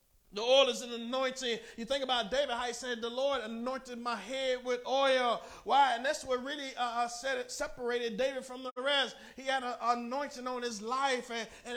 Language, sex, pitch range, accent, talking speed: English, male, 165-255 Hz, American, 195 wpm